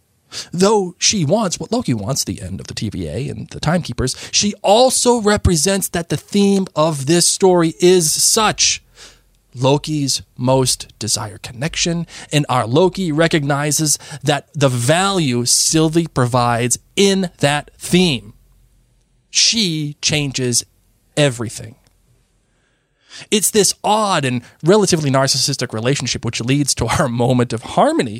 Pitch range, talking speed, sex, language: 115-160 Hz, 125 wpm, male, English